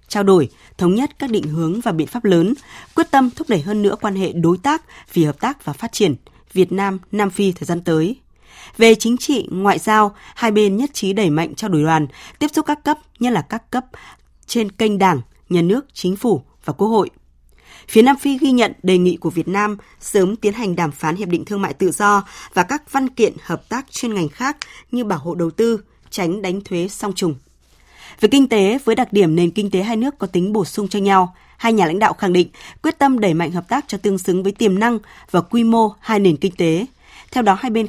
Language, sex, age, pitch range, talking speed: Vietnamese, female, 20-39, 175-230 Hz, 240 wpm